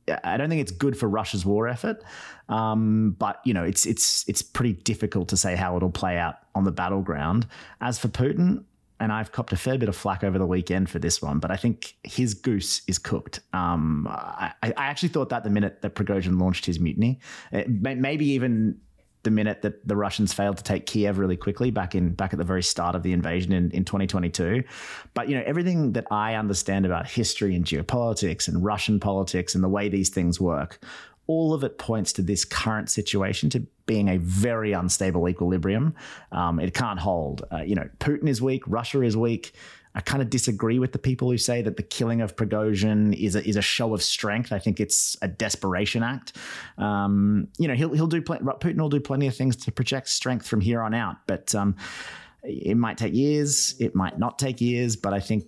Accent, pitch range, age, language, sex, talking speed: Australian, 95-120 Hz, 30-49, English, male, 215 wpm